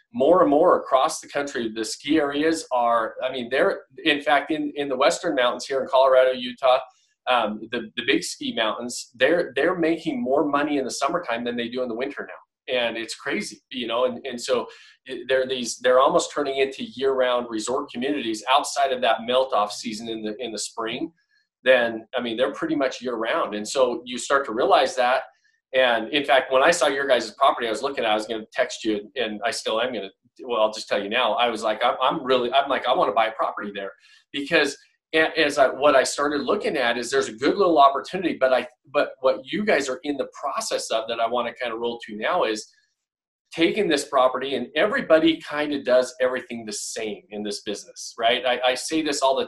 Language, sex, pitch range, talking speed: English, male, 115-150 Hz, 225 wpm